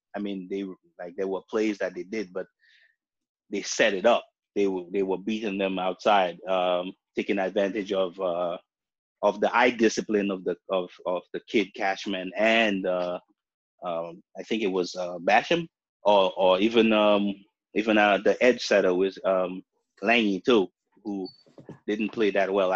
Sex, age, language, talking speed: male, 20-39, English, 170 wpm